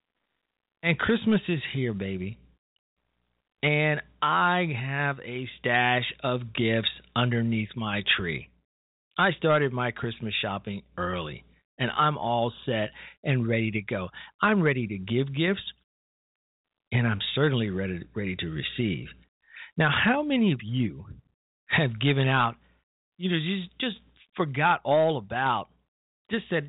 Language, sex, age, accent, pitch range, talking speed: English, male, 40-59, American, 105-160 Hz, 130 wpm